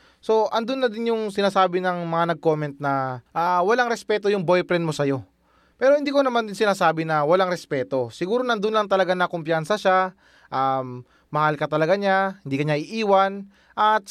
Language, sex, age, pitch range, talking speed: Filipino, male, 20-39, 160-205 Hz, 185 wpm